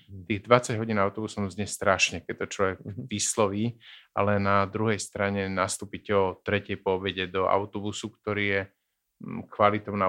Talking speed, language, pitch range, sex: 145 wpm, Slovak, 95-105 Hz, male